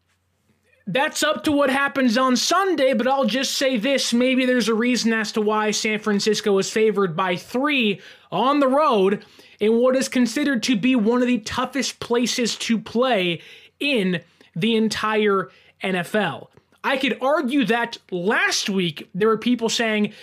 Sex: male